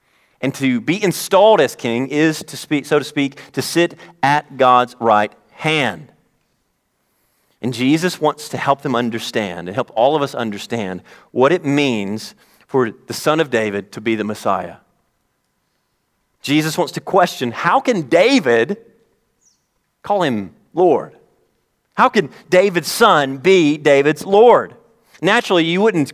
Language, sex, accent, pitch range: English, male, American, 120-160 Hz